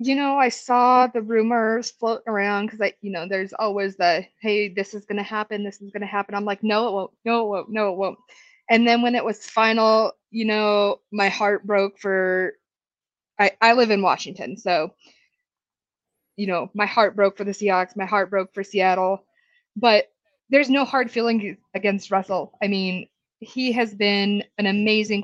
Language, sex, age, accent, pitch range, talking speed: English, female, 20-39, American, 195-225 Hz, 195 wpm